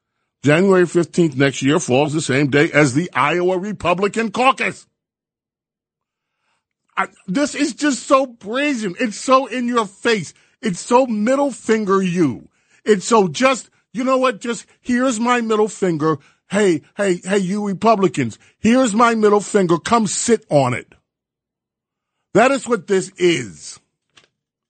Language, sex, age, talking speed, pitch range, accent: English, male, 40-59, 140 wpm, 145-225 Hz, American